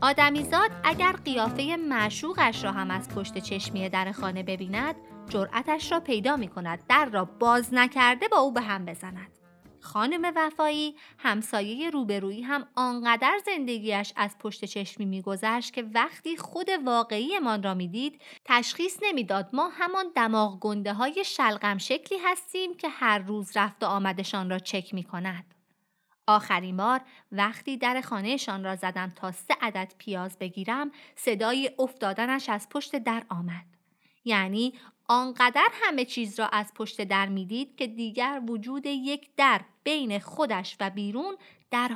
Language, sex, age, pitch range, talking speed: Persian, female, 30-49, 200-285 Hz, 145 wpm